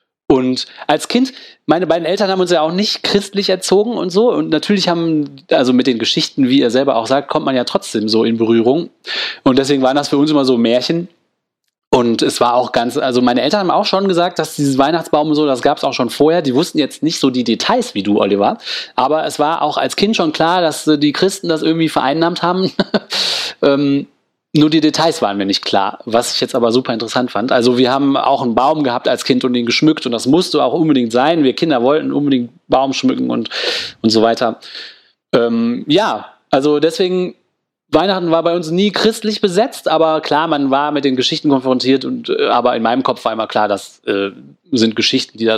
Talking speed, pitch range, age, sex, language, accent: 220 wpm, 130-175 Hz, 30-49, male, German, German